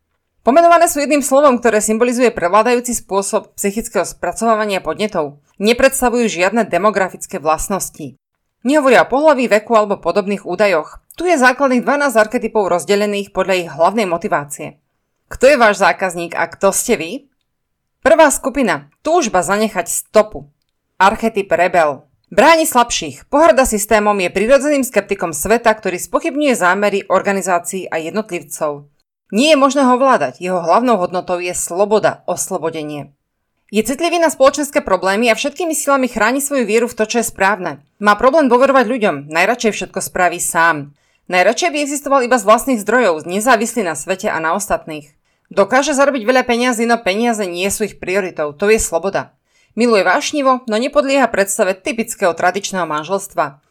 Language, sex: Slovak, female